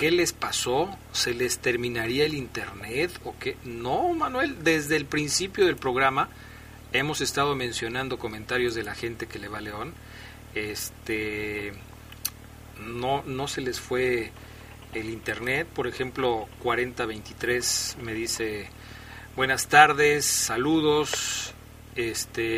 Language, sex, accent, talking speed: Spanish, male, Mexican, 120 wpm